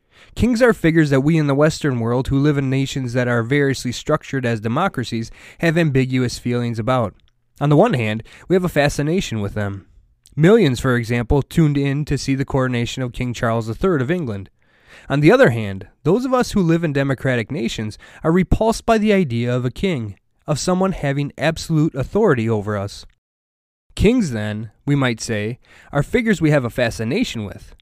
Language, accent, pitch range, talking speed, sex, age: English, American, 115-155 Hz, 190 wpm, male, 20-39